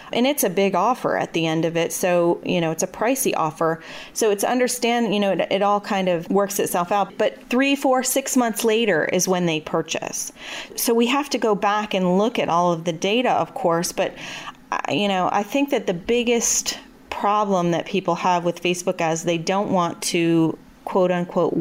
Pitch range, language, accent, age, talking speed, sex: 170-210 Hz, English, American, 30-49, 215 wpm, female